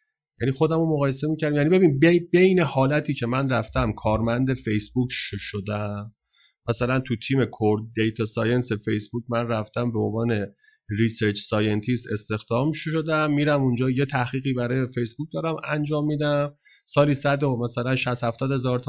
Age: 30-49